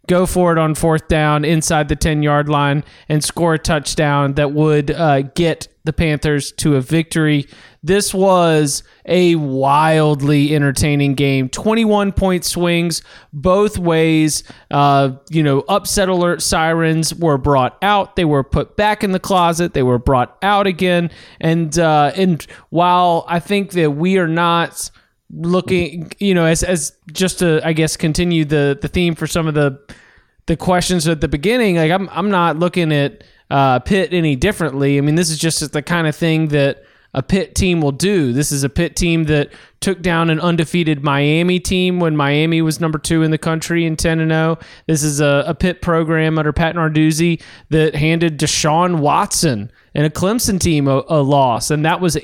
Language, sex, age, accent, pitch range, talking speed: English, male, 20-39, American, 150-175 Hz, 180 wpm